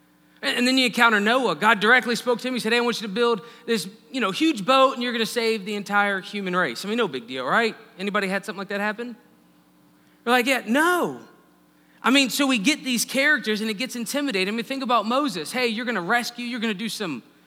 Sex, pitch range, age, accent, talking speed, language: male, 185-250 Hz, 30-49, American, 245 wpm, English